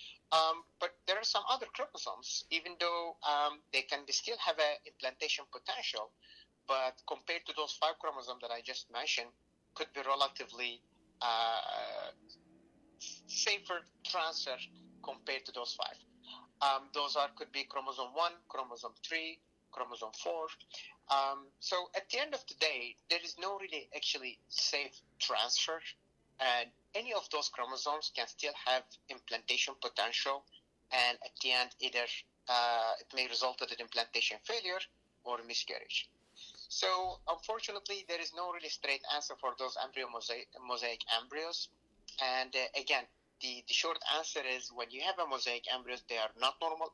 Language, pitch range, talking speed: English, 120-160 Hz, 155 wpm